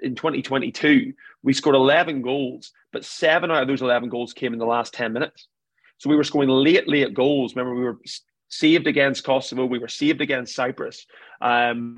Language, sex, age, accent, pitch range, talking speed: English, male, 30-49, British, 125-145 Hz, 190 wpm